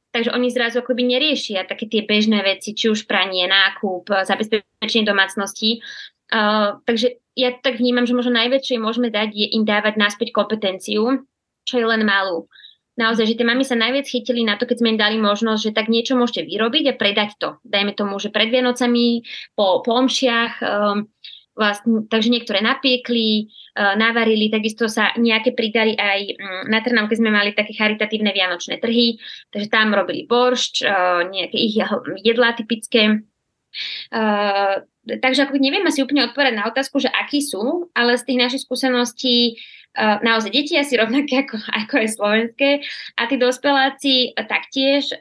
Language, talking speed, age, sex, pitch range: Slovak, 165 wpm, 20-39, female, 215-250 Hz